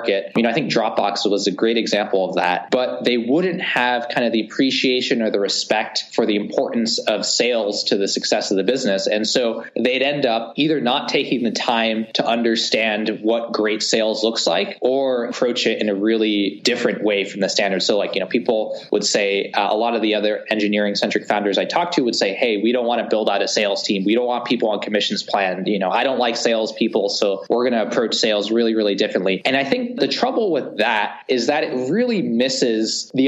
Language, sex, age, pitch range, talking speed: English, male, 20-39, 105-120 Hz, 235 wpm